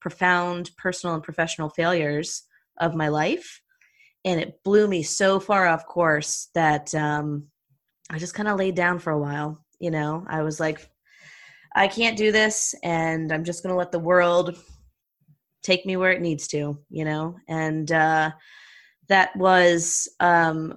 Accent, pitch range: American, 155-175 Hz